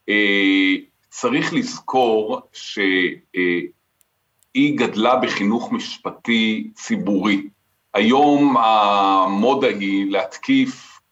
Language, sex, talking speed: Hebrew, male, 70 wpm